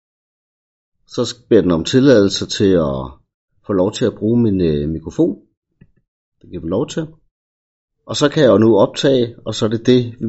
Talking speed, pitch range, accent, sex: 185 wpm, 85-130 Hz, native, male